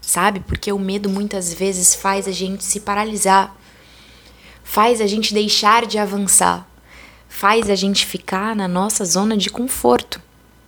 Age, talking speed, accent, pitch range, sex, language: 20-39, 145 wpm, Brazilian, 195-235 Hz, female, Portuguese